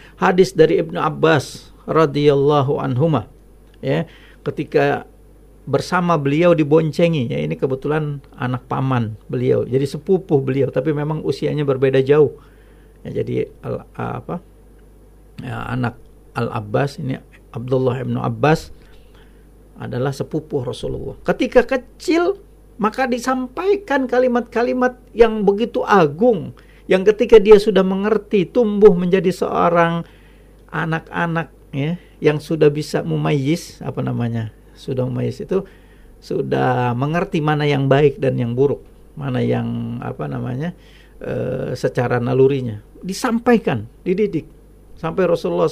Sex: male